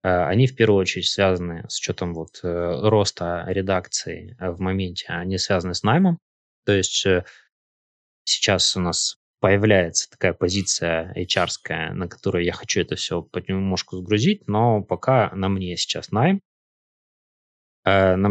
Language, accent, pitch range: Russian, native, 90-110 Hz